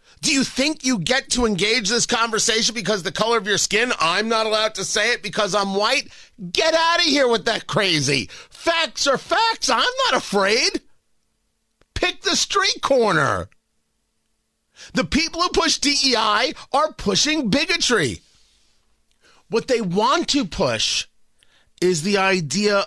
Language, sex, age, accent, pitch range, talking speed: English, male, 40-59, American, 160-245 Hz, 150 wpm